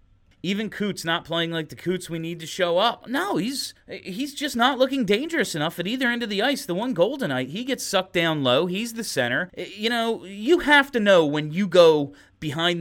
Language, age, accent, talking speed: English, 30-49, American, 225 wpm